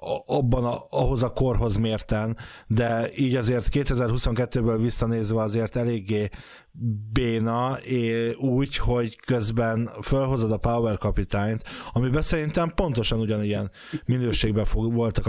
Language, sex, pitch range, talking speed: Hungarian, male, 110-125 Hz, 110 wpm